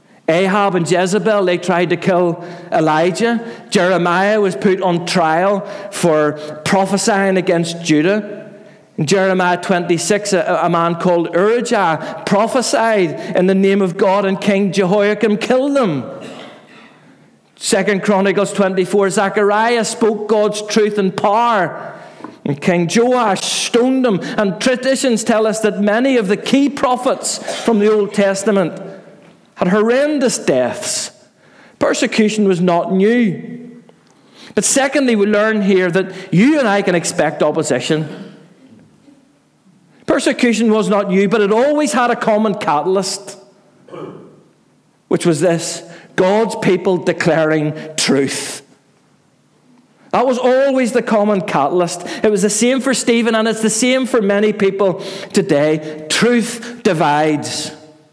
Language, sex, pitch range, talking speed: English, male, 180-225 Hz, 125 wpm